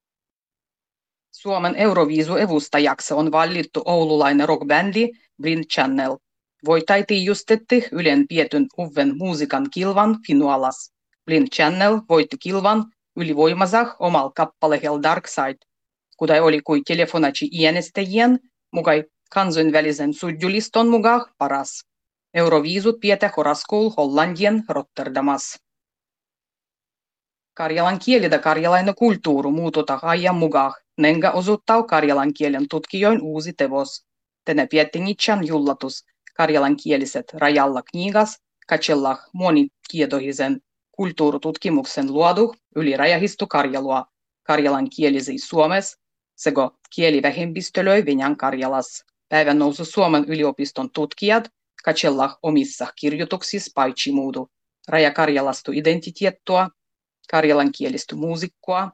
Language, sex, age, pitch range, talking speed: Finnish, female, 30-49, 145-195 Hz, 95 wpm